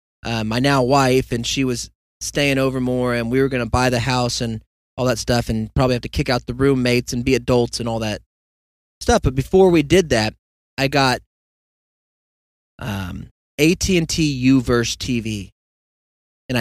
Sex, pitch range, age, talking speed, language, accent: male, 100-130 Hz, 30-49, 175 wpm, English, American